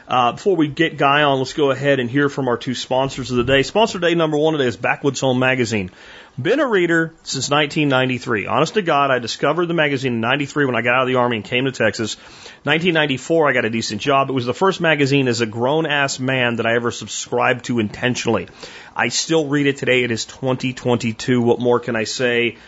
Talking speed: 230 wpm